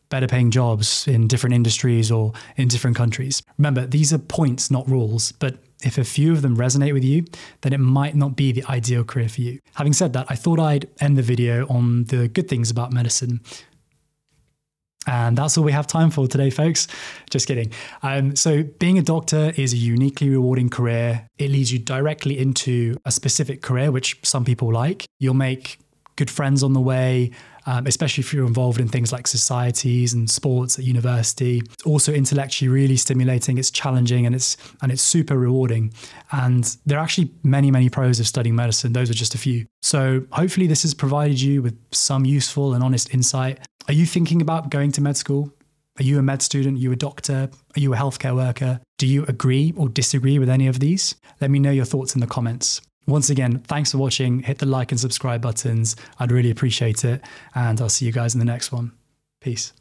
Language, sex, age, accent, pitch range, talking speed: English, male, 10-29, British, 125-140 Hz, 205 wpm